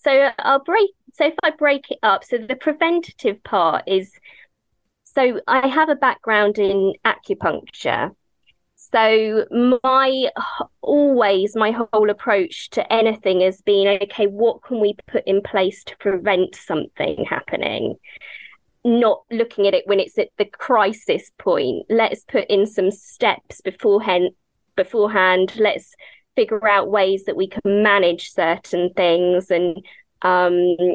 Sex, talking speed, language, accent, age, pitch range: female, 140 wpm, English, British, 20-39, 190-240 Hz